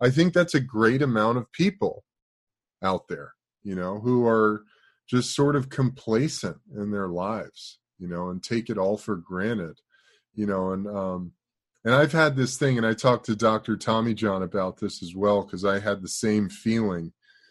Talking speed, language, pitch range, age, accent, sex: 190 wpm, English, 105-140 Hz, 30-49, American, male